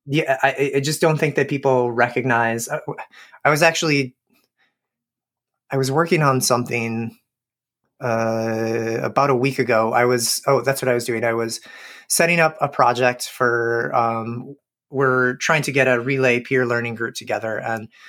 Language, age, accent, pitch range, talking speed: English, 30-49, American, 120-155 Hz, 165 wpm